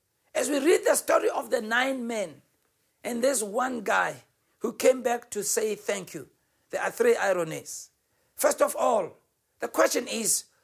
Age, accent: 60-79, South African